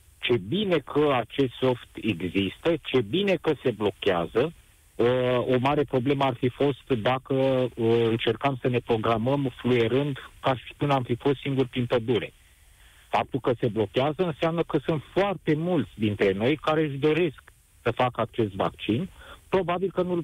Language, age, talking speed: Romanian, 50-69, 160 wpm